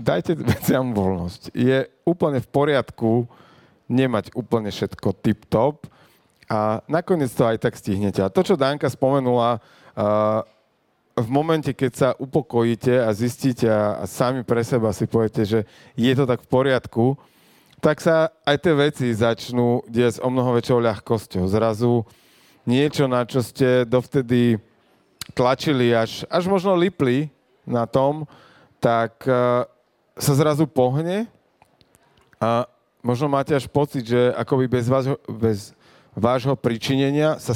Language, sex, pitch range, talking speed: Slovak, male, 115-140 Hz, 130 wpm